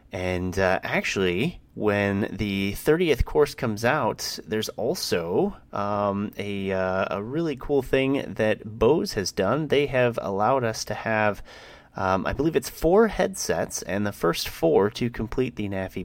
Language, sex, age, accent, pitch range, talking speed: English, male, 30-49, American, 90-120 Hz, 155 wpm